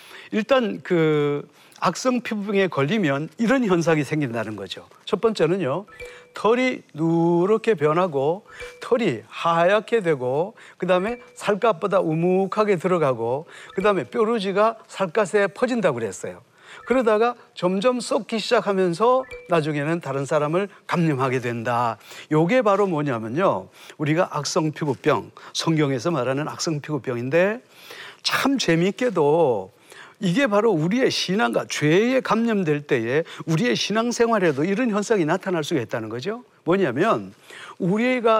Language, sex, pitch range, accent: Korean, male, 160-235 Hz, native